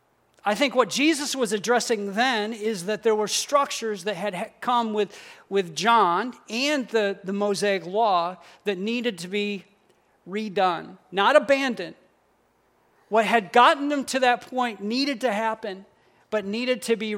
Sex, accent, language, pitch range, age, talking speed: male, American, English, 195-230 Hz, 40-59, 155 wpm